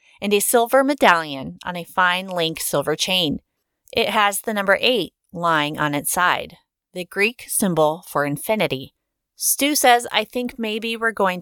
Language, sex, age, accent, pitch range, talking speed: English, female, 30-49, American, 165-210 Hz, 165 wpm